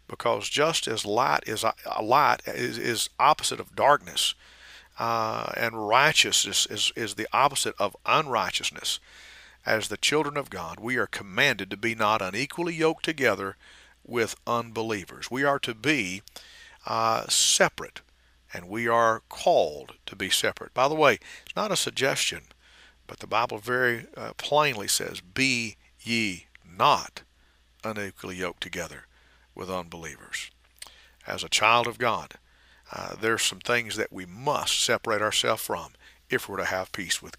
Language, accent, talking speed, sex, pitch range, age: English, American, 150 wpm, male, 95-120 Hz, 50-69